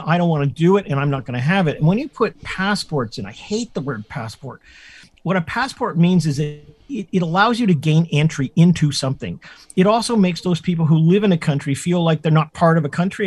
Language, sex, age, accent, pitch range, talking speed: English, male, 50-69, American, 140-180 Hz, 255 wpm